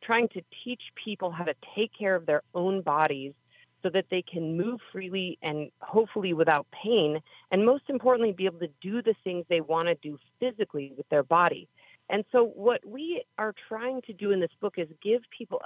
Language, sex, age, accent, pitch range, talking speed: English, female, 40-59, American, 155-210 Hz, 205 wpm